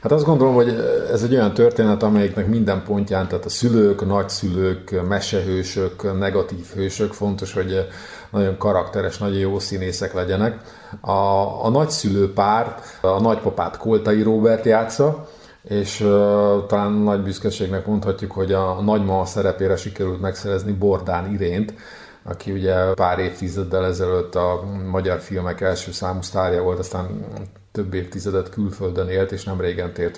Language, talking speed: Hungarian, 140 wpm